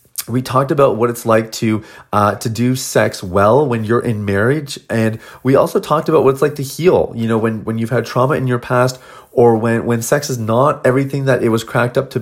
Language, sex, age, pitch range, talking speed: English, male, 30-49, 110-130 Hz, 240 wpm